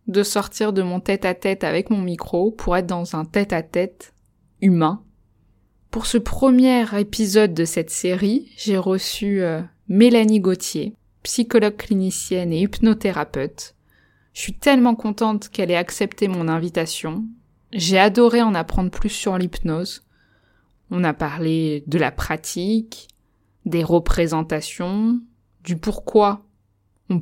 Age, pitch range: 20-39, 165-210 Hz